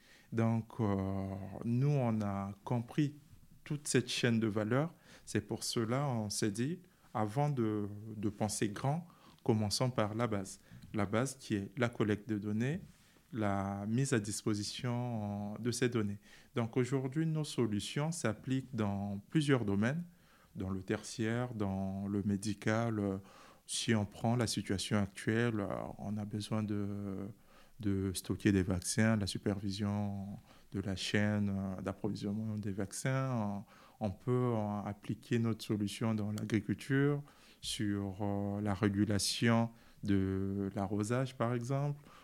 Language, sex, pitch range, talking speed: French, male, 100-120 Hz, 130 wpm